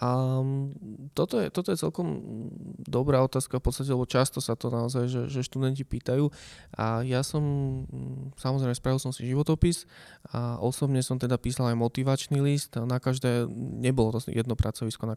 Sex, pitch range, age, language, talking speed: male, 110-125 Hz, 20-39, Slovak, 165 wpm